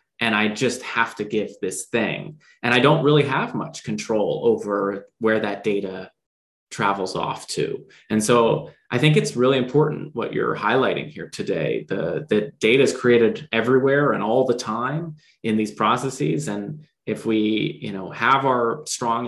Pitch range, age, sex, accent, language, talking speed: 105-135 Hz, 20-39, male, American, English, 170 wpm